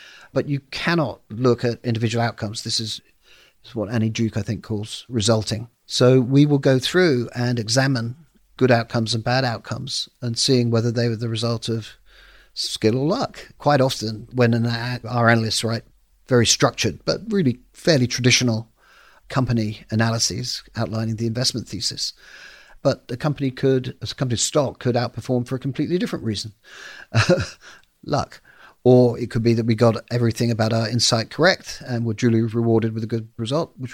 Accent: British